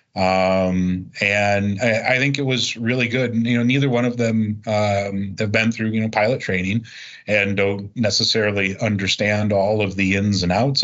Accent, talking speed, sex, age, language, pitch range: American, 185 wpm, male, 30-49, English, 95-115 Hz